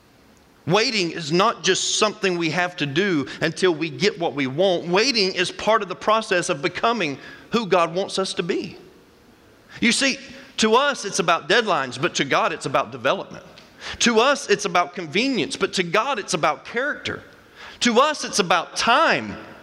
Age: 40-59